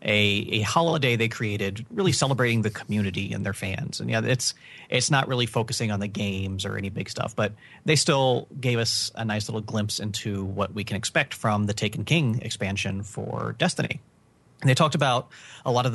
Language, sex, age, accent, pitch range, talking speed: English, male, 30-49, American, 100-120 Hz, 205 wpm